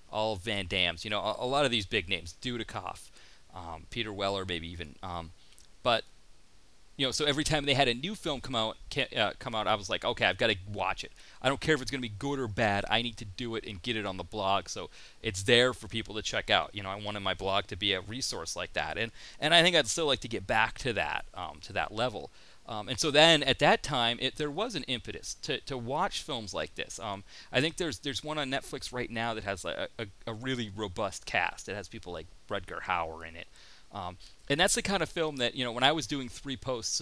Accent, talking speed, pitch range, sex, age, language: American, 265 wpm, 95-130 Hz, male, 30-49, English